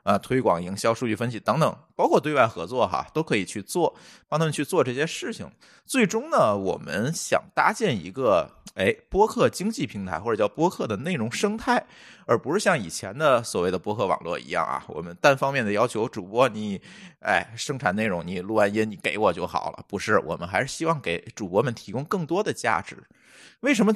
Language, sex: Chinese, male